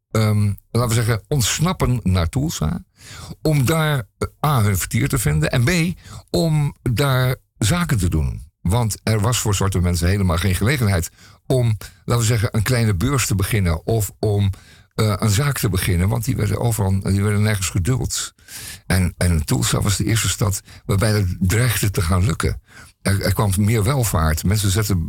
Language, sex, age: Dutch, male, 50-69